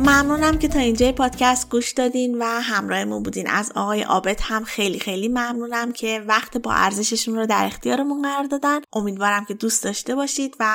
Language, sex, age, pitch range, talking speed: Persian, female, 10-29, 205-245 Hz, 180 wpm